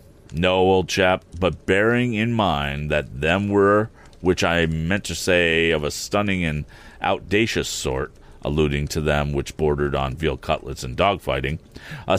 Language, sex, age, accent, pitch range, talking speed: English, male, 40-59, American, 80-110 Hz, 160 wpm